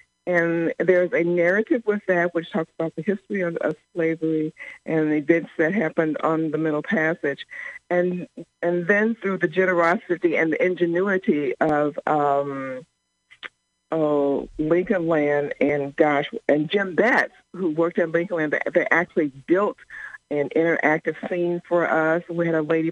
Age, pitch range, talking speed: 60-79, 150-175 Hz, 155 wpm